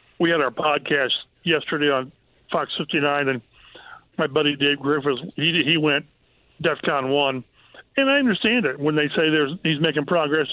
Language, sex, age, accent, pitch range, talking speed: English, male, 50-69, American, 145-170 Hz, 165 wpm